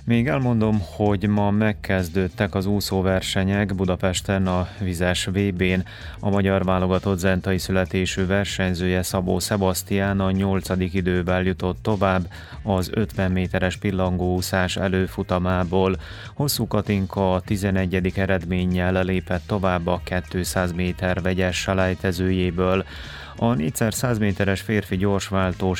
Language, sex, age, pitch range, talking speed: Hungarian, male, 30-49, 90-100 Hz, 105 wpm